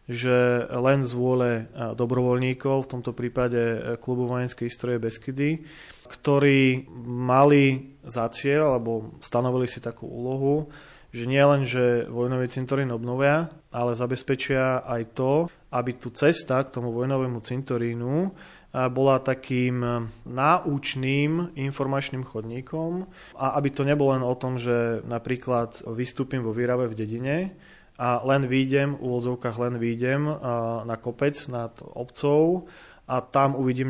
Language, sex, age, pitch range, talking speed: Slovak, male, 30-49, 120-140 Hz, 120 wpm